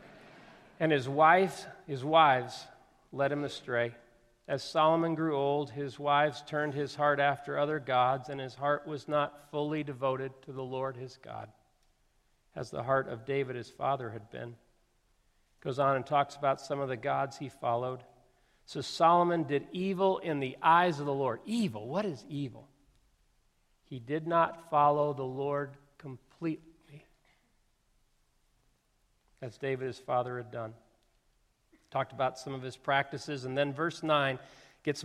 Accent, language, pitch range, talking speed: American, English, 130-150 Hz, 155 wpm